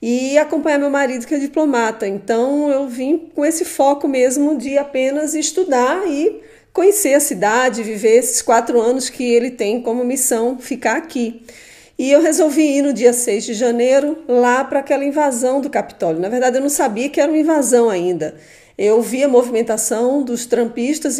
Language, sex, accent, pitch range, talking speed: Portuguese, female, Brazilian, 230-285 Hz, 180 wpm